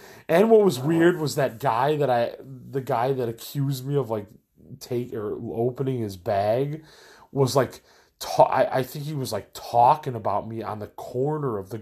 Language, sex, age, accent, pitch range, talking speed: English, male, 30-49, American, 105-140 Hz, 195 wpm